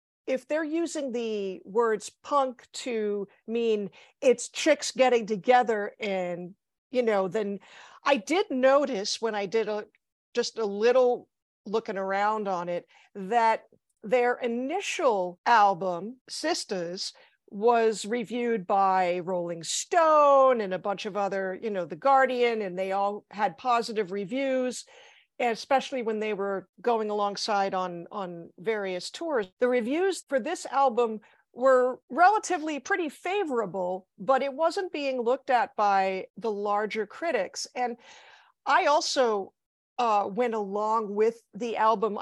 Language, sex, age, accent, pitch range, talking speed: English, female, 50-69, American, 200-260 Hz, 130 wpm